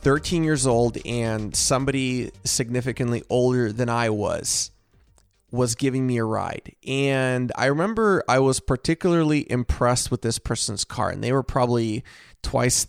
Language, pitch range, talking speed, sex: English, 115-140 Hz, 145 wpm, male